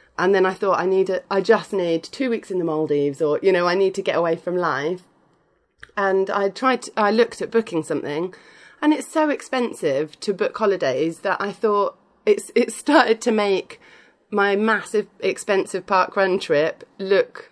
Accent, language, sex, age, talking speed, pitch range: British, English, female, 30-49, 190 wpm, 185-235 Hz